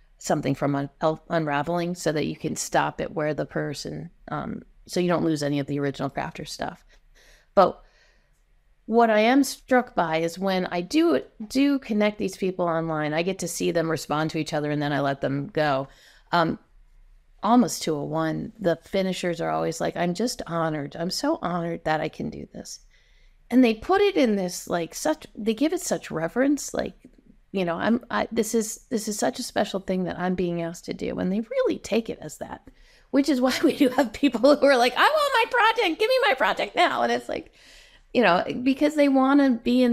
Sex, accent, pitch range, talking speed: female, American, 165-245 Hz, 215 wpm